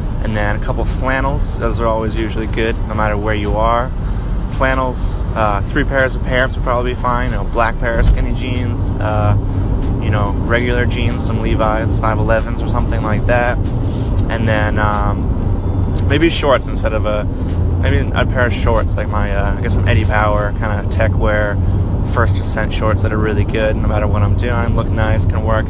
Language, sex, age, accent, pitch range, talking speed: English, male, 20-39, American, 95-110 Hz, 200 wpm